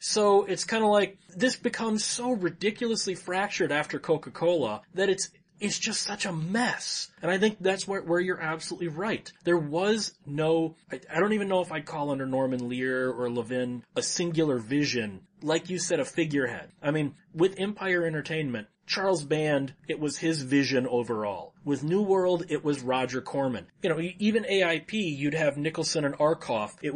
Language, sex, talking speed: English, male, 180 wpm